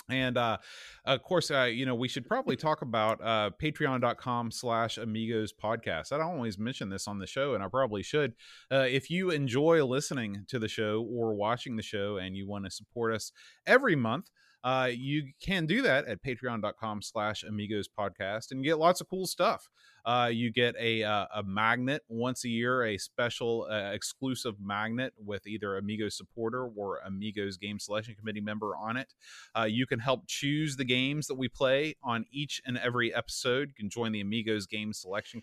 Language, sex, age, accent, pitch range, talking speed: English, male, 30-49, American, 105-130 Hz, 195 wpm